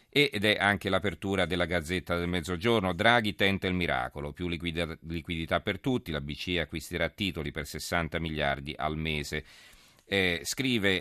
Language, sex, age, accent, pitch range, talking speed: Italian, male, 40-59, native, 80-95 Hz, 145 wpm